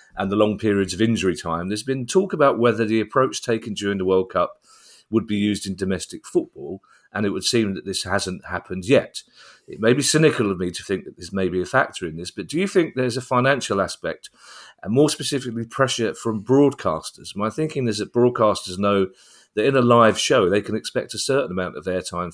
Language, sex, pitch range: English, male, 100-120 Hz